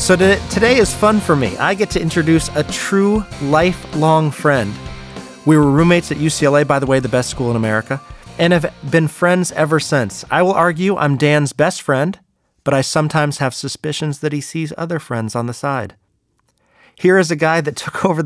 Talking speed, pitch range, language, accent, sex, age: 195 wpm, 140-160 Hz, English, American, male, 30-49